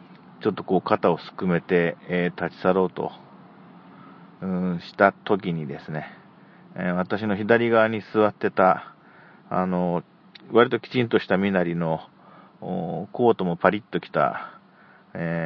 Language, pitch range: Japanese, 90-110 Hz